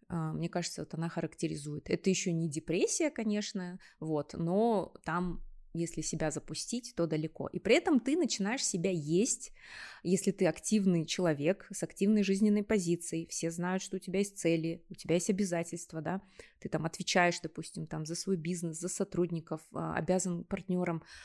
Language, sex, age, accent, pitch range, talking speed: Russian, female, 20-39, native, 165-195 Hz, 160 wpm